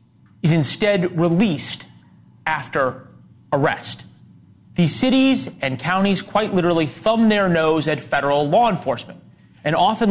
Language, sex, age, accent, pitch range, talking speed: English, male, 30-49, American, 135-205 Hz, 120 wpm